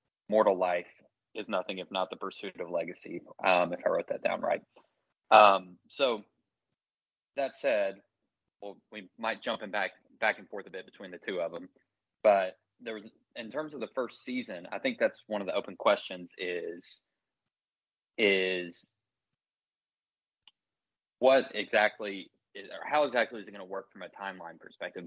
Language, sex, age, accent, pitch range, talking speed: English, male, 20-39, American, 95-110 Hz, 170 wpm